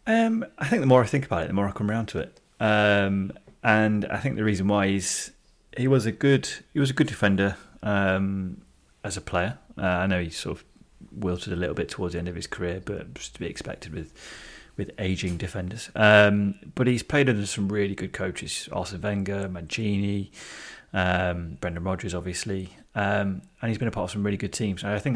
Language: English